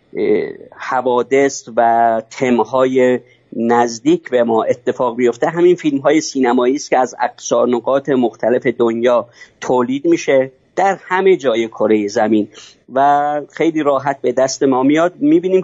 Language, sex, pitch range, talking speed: Persian, male, 120-145 Hz, 125 wpm